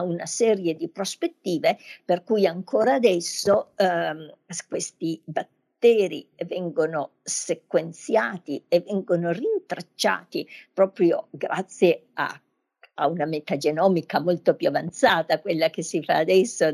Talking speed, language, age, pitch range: 105 wpm, Italian, 50-69, 175-230 Hz